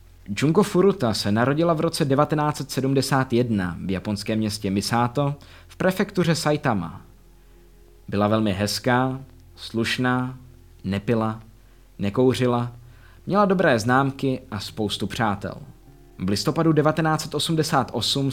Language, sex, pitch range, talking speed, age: Czech, male, 100-160 Hz, 95 wpm, 20-39